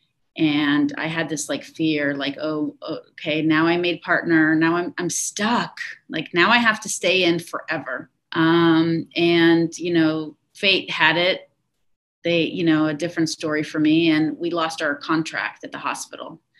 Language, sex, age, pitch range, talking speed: English, female, 30-49, 150-185 Hz, 175 wpm